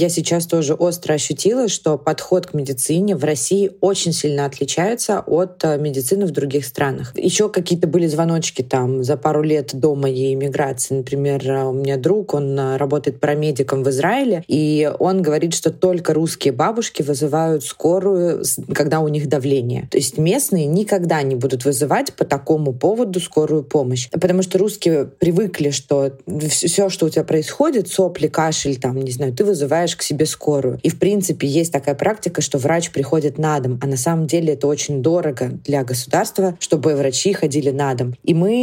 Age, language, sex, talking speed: 20-39, Russian, female, 170 wpm